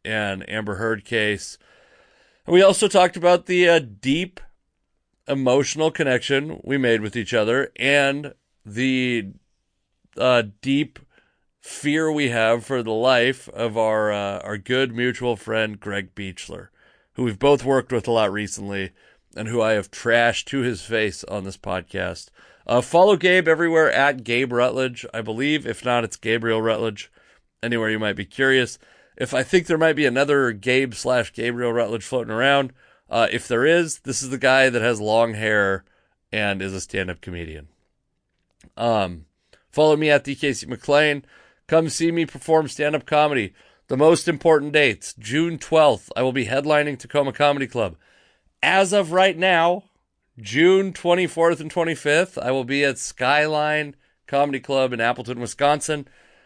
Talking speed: 160 wpm